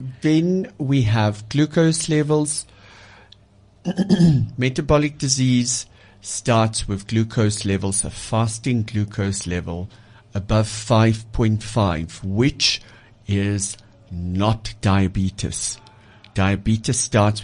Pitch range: 95-120 Hz